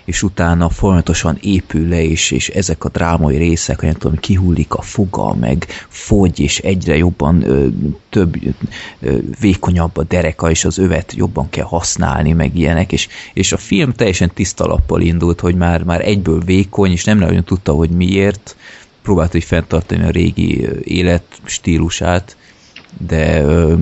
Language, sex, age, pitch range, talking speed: Hungarian, male, 30-49, 80-95 Hz, 160 wpm